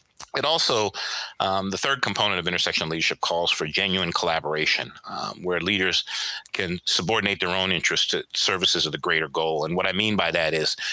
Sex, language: male, English